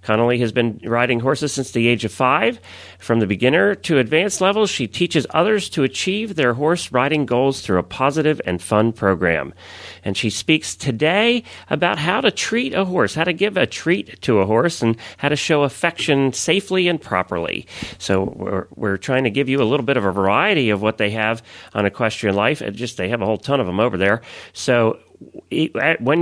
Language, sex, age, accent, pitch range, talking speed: English, male, 40-59, American, 110-150 Hz, 205 wpm